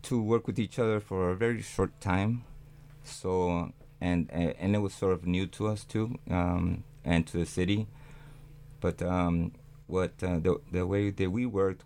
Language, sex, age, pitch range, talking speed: English, male, 30-49, 85-140 Hz, 185 wpm